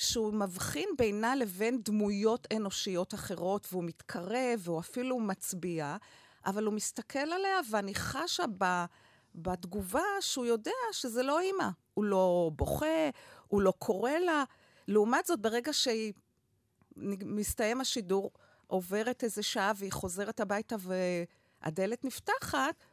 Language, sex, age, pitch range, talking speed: Hebrew, female, 50-69, 185-260 Hz, 120 wpm